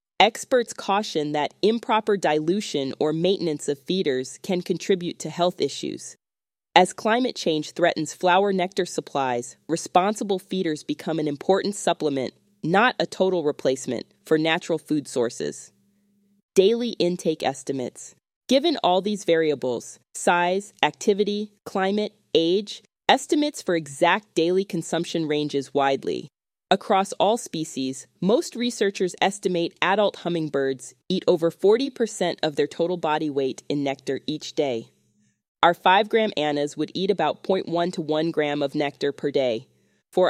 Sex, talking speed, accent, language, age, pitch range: female, 135 wpm, American, English, 20-39, 150-200 Hz